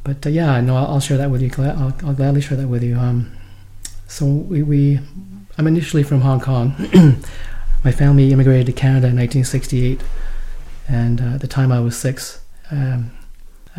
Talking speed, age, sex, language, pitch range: 185 wpm, 30-49, male, English, 125-135 Hz